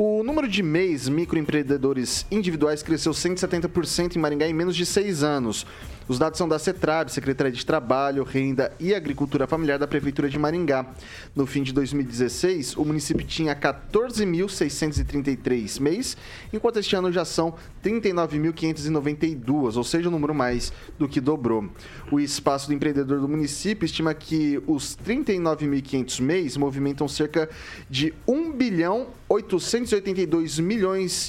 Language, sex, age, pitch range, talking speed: Portuguese, male, 30-49, 135-170 Hz, 140 wpm